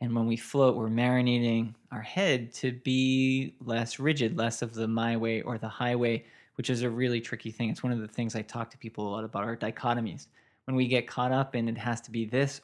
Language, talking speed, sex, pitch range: English, 240 wpm, male, 115-130 Hz